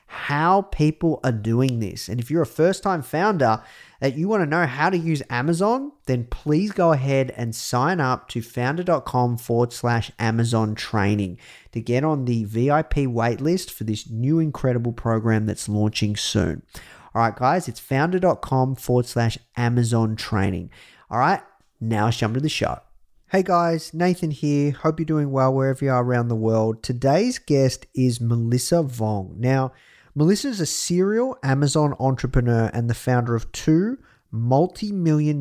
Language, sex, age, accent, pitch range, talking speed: English, male, 30-49, Australian, 115-155 Hz, 165 wpm